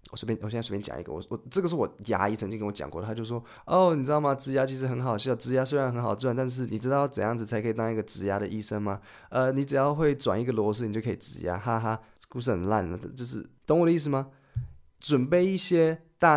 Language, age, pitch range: Chinese, 20-39, 110-140 Hz